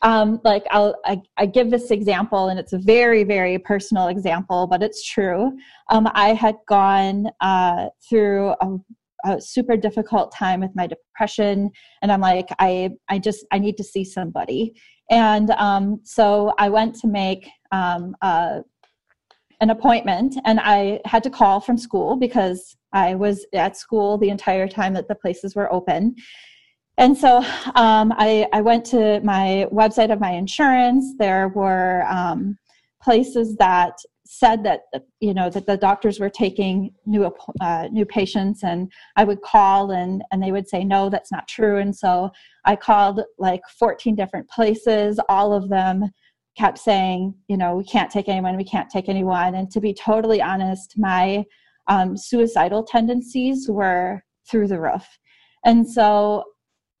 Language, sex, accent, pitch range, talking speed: English, female, American, 190-220 Hz, 165 wpm